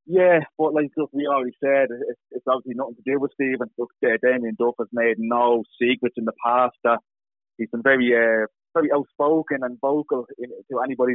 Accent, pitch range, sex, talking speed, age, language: British, 115-135 Hz, male, 200 wpm, 20-39, English